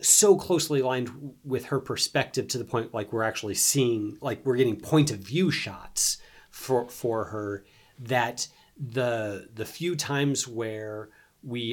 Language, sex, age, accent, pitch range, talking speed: English, male, 30-49, American, 110-145 Hz, 155 wpm